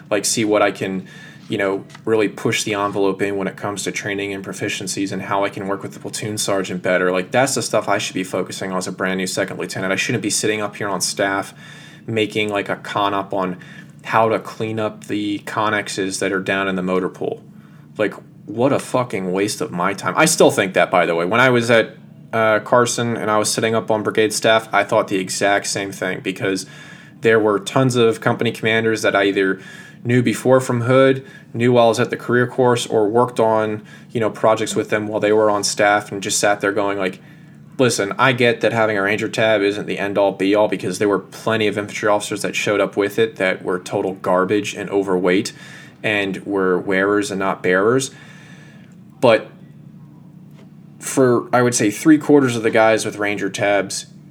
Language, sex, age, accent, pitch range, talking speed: English, male, 20-39, American, 100-120 Hz, 215 wpm